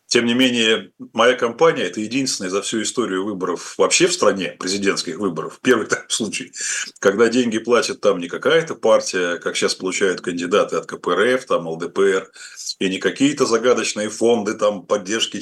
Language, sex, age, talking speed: Russian, male, 30-49, 160 wpm